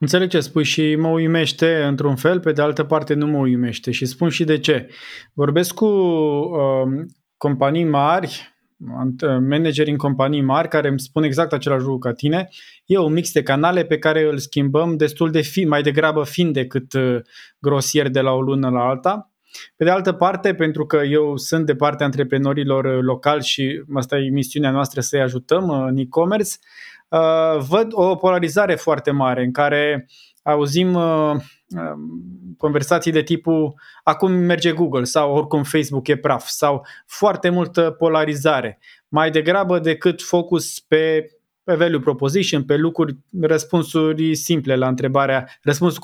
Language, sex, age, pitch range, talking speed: Romanian, male, 20-39, 140-165 Hz, 155 wpm